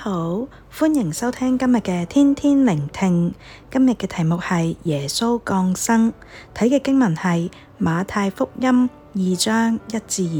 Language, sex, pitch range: Chinese, female, 180-255 Hz